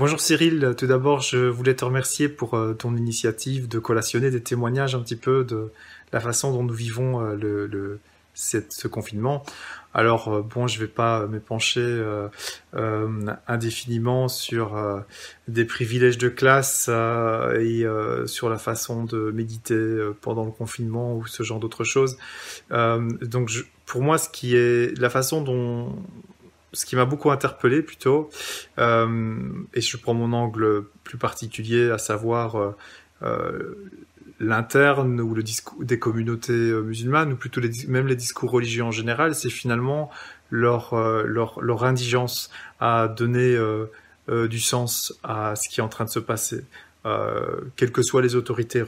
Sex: male